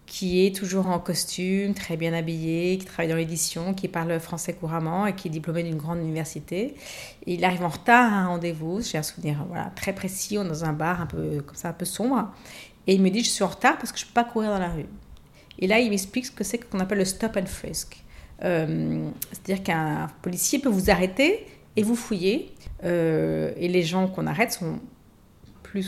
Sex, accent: female, French